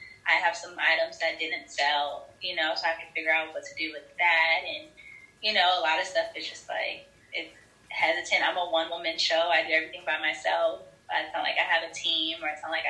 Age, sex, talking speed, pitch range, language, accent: 10-29, female, 240 wpm, 160-205 Hz, English, American